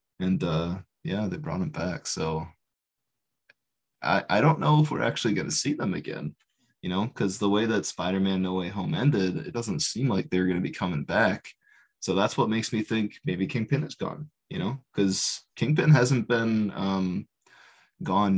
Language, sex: English, male